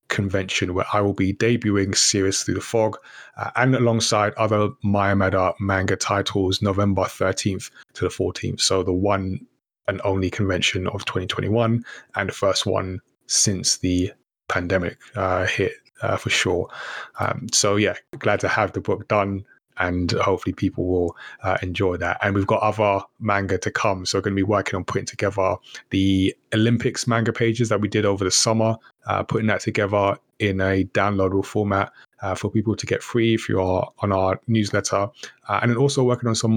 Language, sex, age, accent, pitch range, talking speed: English, male, 20-39, British, 95-110 Hz, 180 wpm